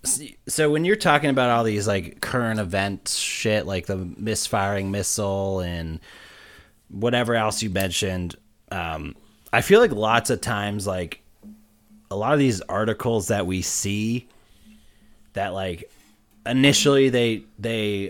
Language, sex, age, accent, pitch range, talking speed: English, male, 30-49, American, 100-130 Hz, 135 wpm